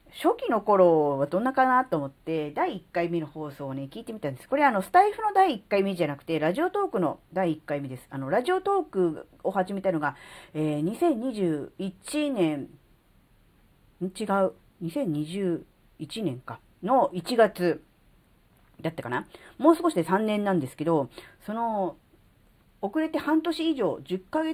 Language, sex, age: Japanese, female, 40-59